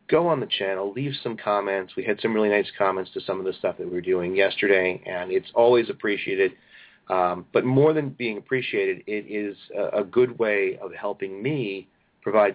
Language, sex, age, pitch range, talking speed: English, male, 40-59, 100-125 Hz, 205 wpm